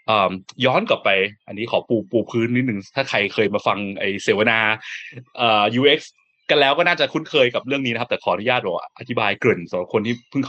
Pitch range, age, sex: 110-170 Hz, 20-39, male